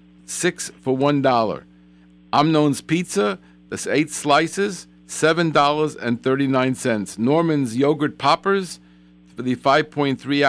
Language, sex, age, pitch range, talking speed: English, male, 50-69, 110-150 Hz, 115 wpm